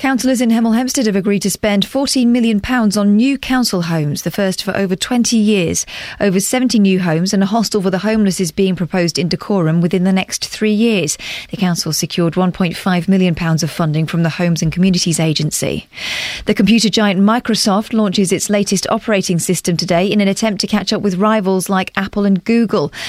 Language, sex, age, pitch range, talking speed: English, female, 40-59, 175-225 Hz, 195 wpm